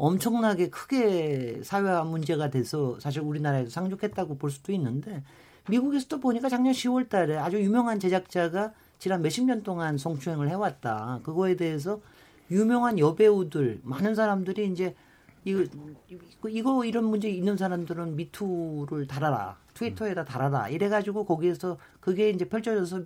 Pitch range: 150-220 Hz